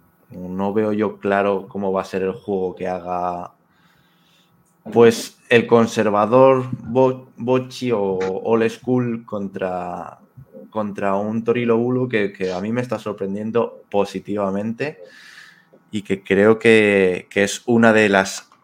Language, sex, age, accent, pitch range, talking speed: Spanish, male, 20-39, Spanish, 95-115 Hz, 130 wpm